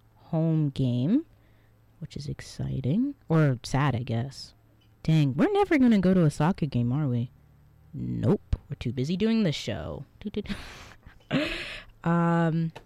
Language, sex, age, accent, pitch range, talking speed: English, female, 20-39, American, 120-200 Hz, 130 wpm